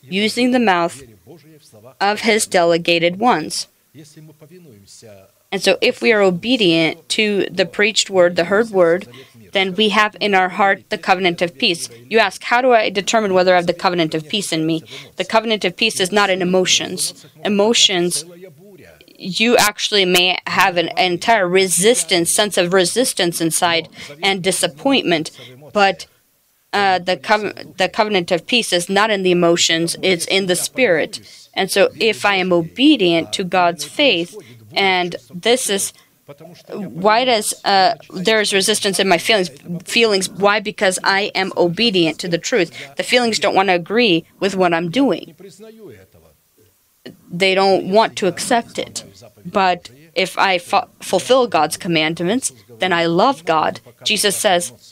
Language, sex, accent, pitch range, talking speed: English, female, American, 170-210 Hz, 155 wpm